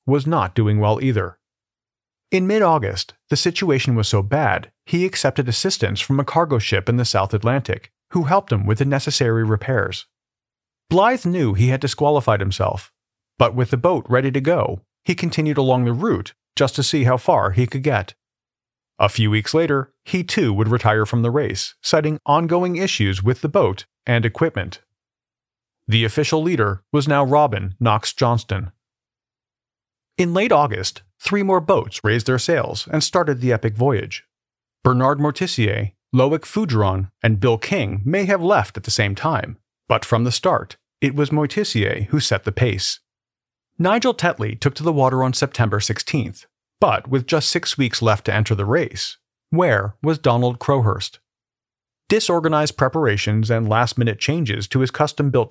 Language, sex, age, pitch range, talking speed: English, male, 40-59, 110-150 Hz, 165 wpm